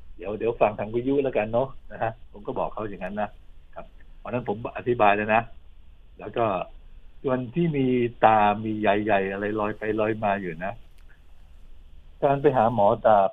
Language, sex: Thai, male